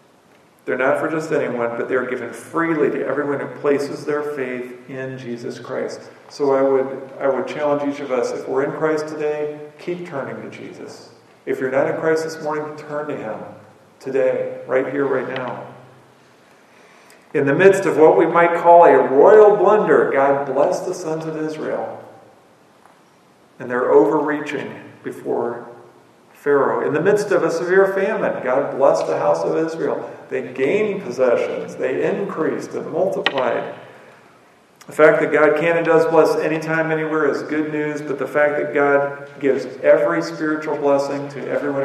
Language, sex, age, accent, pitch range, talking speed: English, male, 50-69, American, 135-160 Hz, 165 wpm